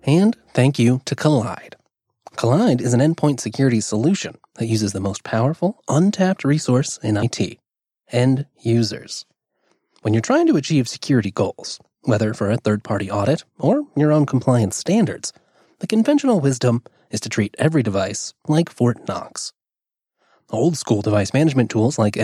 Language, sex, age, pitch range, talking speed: English, male, 30-49, 110-165 Hz, 150 wpm